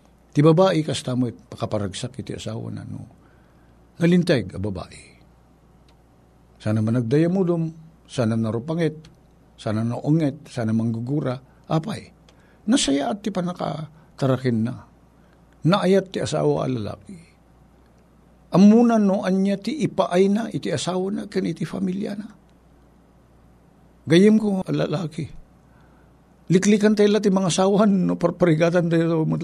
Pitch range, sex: 105-165 Hz, male